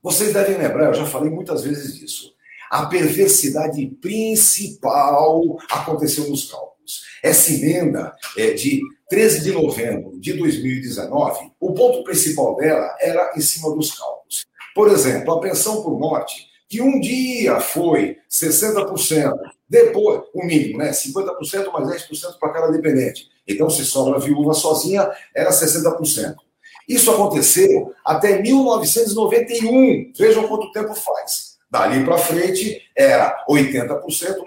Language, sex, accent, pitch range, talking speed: Portuguese, male, Brazilian, 155-255 Hz, 125 wpm